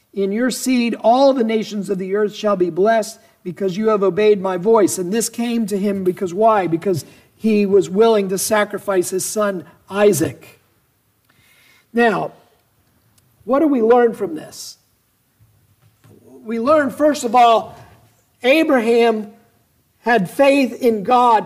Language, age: English, 50-69